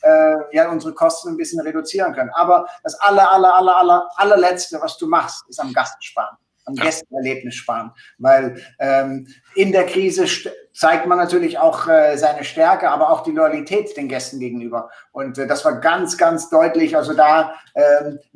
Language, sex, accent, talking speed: German, male, German, 175 wpm